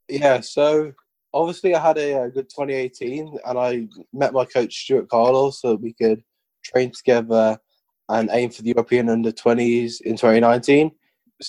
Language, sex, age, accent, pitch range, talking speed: English, male, 20-39, British, 115-140 Hz, 150 wpm